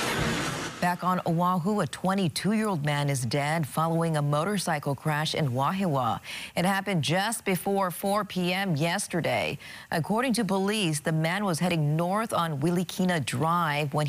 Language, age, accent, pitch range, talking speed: English, 40-59, American, 145-185 Hz, 140 wpm